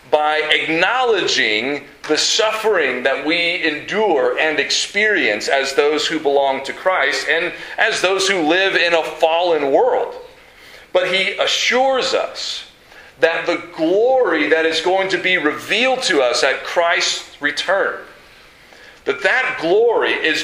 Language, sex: English, male